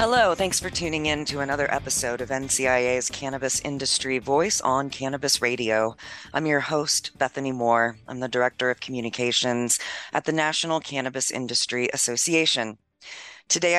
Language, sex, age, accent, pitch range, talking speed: English, female, 30-49, American, 120-145 Hz, 145 wpm